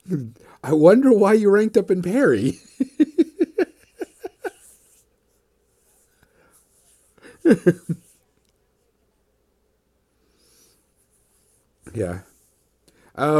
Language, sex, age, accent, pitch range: English, male, 50-69, American, 100-140 Hz